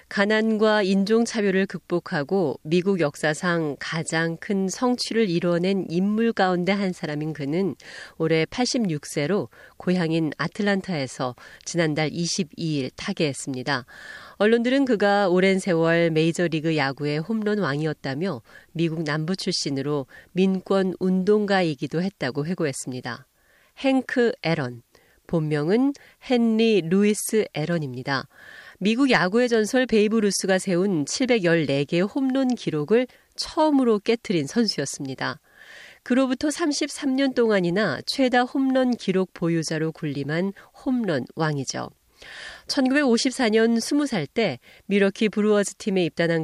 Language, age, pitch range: Korean, 40-59, 160-230 Hz